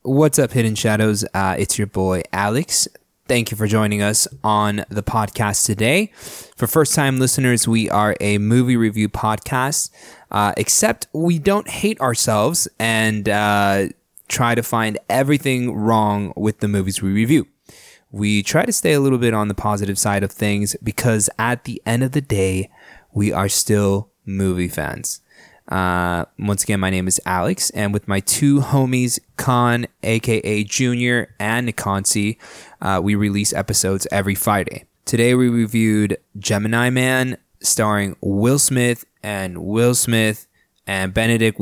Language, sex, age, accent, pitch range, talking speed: English, male, 20-39, American, 100-125 Hz, 155 wpm